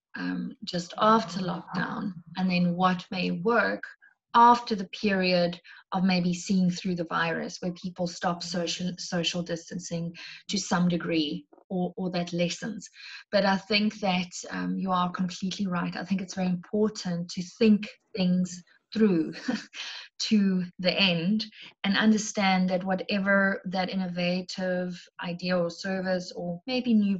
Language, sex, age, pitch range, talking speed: English, female, 20-39, 175-195 Hz, 140 wpm